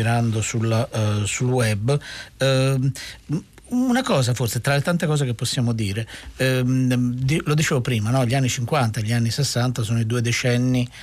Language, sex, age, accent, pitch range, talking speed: Italian, male, 50-69, native, 115-140 Hz, 170 wpm